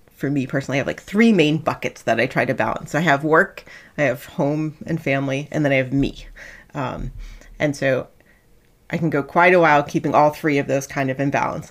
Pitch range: 135-165 Hz